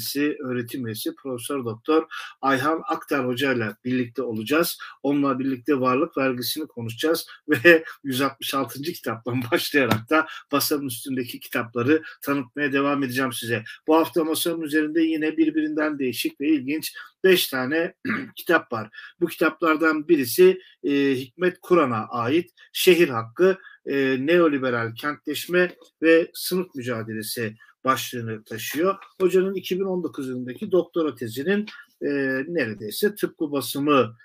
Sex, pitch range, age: male, 130-175 Hz, 50-69